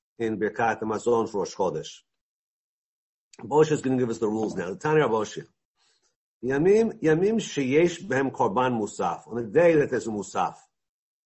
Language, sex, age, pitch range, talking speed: English, male, 50-69, 115-160 Hz, 160 wpm